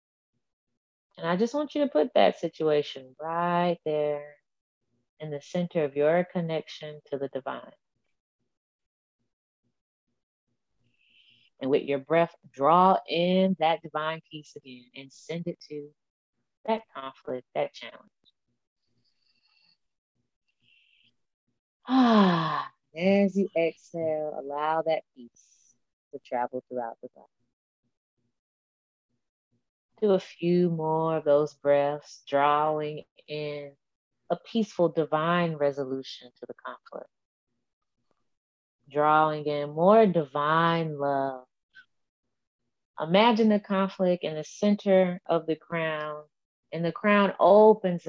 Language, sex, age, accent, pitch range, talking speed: English, female, 30-49, American, 145-175 Hz, 105 wpm